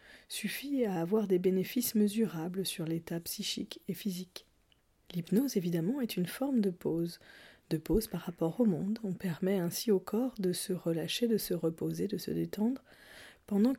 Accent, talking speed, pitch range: French, 170 wpm, 180-220 Hz